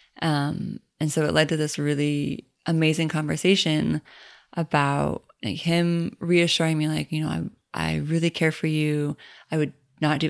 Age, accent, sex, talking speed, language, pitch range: 20-39, American, female, 165 wpm, English, 150-170 Hz